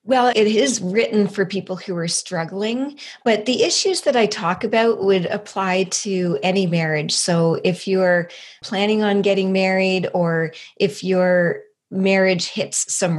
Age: 40-59